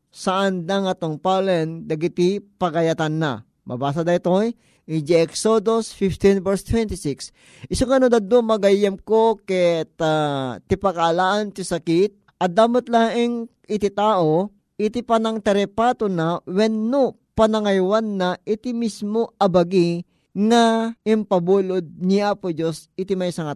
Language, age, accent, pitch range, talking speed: Filipino, 20-39, native, 165-210 Hz, 125 wpm